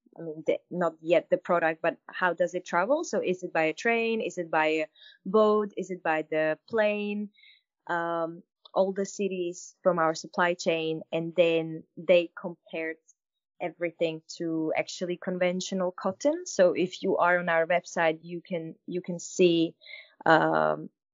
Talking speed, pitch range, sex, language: 160 wpm, 160-185 Hz, female, Italian